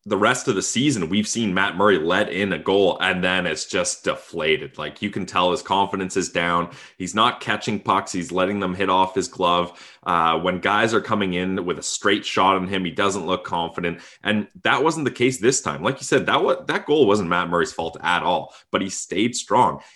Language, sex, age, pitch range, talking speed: English, male, 20-39, 95-125 Hz, 230 wpm